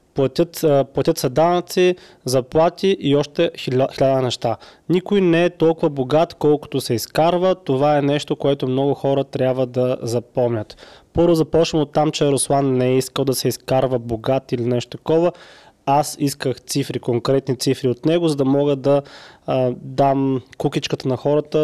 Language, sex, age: Bulgarian, male, 20-39